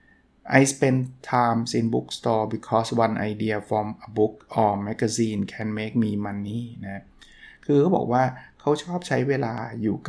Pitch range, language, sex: 110-135 Hz, Thai, male